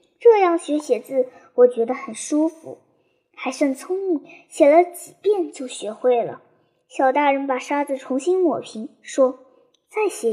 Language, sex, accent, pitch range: Chinese, male, native, 250-330 Hz